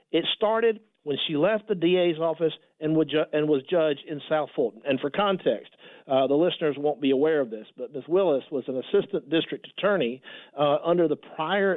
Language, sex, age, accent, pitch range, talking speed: English, male, 50-69, American, 140-175 Hz, 195 wpm